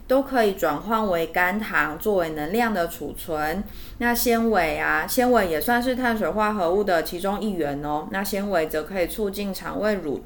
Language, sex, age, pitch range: Chinese, female, 20-39, 170-225 Hz